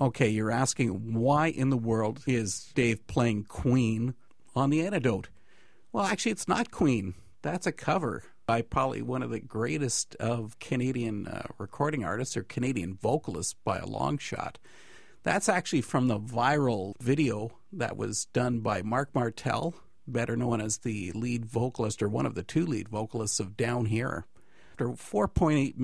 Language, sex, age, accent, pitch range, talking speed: English, male, 50-69, American, 110-145 Hz, 165 wpm